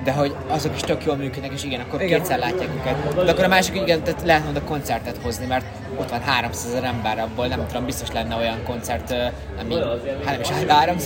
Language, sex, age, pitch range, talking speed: Hungarian, male, 20-39, 110-135 Hz, 215 wpm